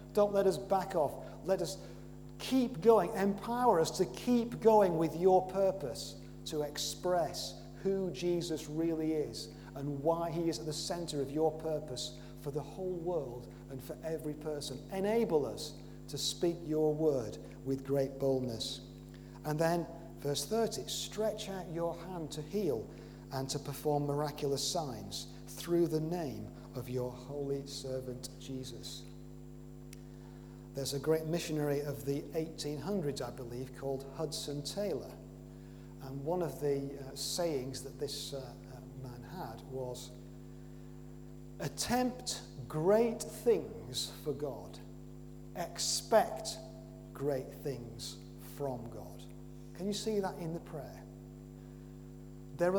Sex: male